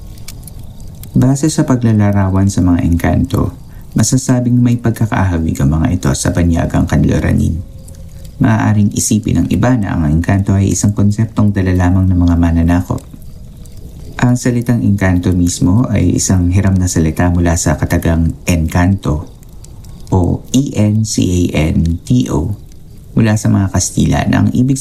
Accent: native